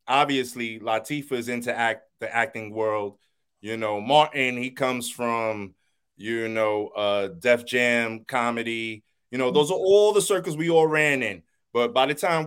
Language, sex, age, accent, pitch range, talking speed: English, male, 30-49, American, 115-140 Hz, 170 wpm